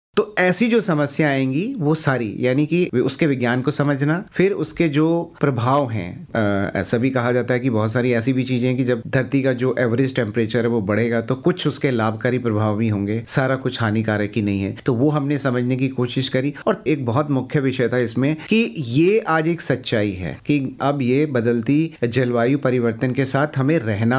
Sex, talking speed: male, 145 wpm